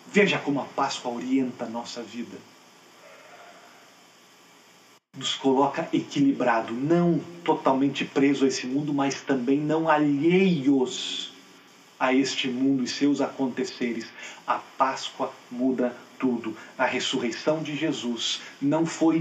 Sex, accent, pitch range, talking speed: male, Brazilian, 145-195 Hz, 110 wpm